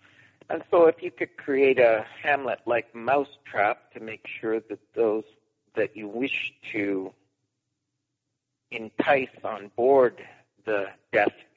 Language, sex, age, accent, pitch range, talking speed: English, male, 50-69, American, 105-135 Hz, 120 wpm